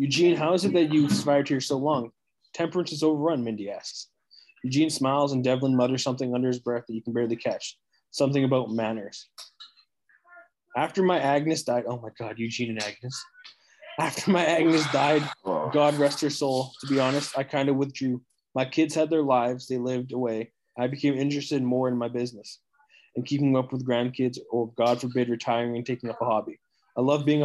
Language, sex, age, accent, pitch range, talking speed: English, male, 20-39, American, 125-145 Hz, 195 wpm